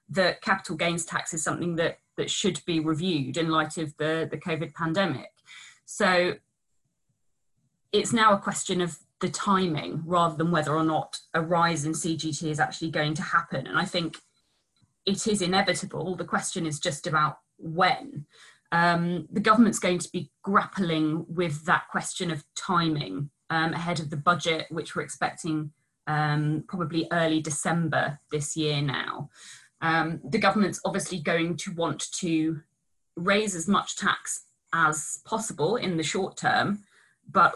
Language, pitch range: English, 155-180 Hz